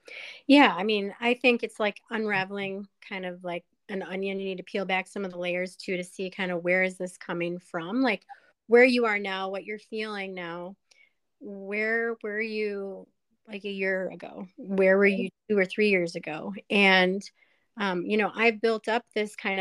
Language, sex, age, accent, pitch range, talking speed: English, female, 30-49, American, 190-220 Hz, 200 wpm